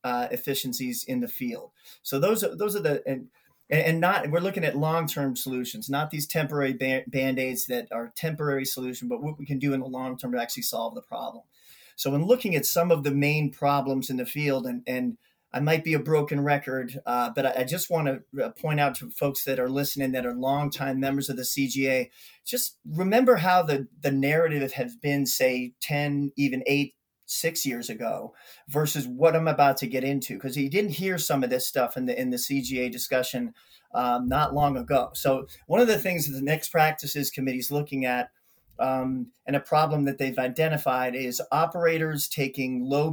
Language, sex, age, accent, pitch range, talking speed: English, male, 40-59, American, 130-150 Hz, 205 wpm